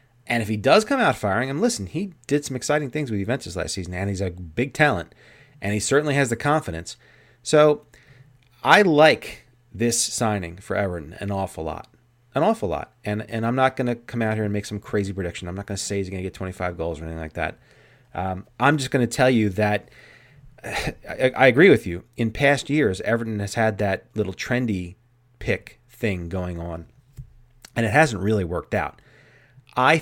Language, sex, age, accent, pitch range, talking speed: English, male, 30-49, American, 95-130 Hz, 210 wpm